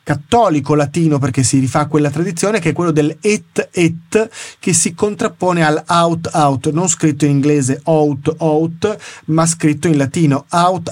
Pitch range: 145-185 Hz